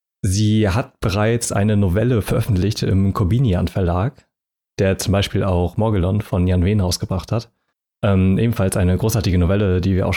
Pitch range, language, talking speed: 95-115 Hz, German, 160 wpm